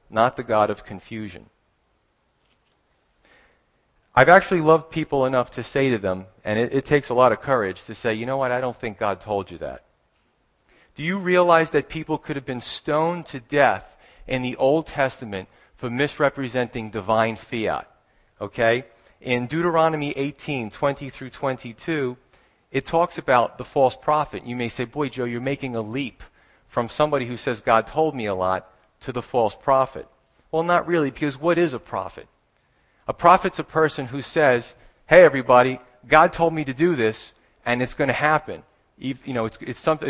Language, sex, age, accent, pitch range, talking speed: English, male, 40-59, American, 115-150 Hz, 180 wpm